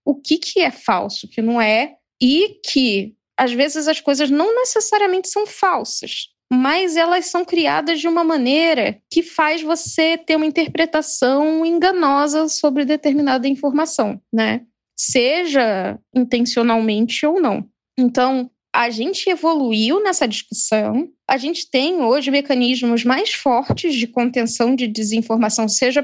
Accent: Brazilian